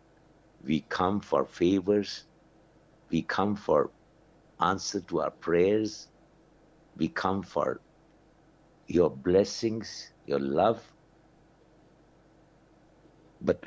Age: 60-79